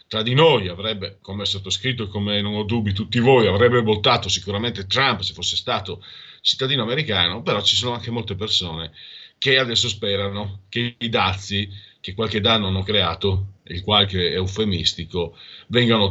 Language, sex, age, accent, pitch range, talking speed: Italian, male, 40-59, native, 95-120 Hz, 170 wpm